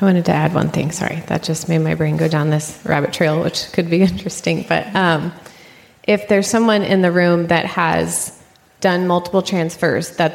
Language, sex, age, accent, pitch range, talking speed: English, female, 20-39, American, 160-180 Hz, 205 wpm